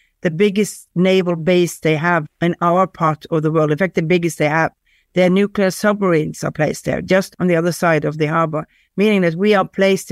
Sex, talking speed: female, 220 wpm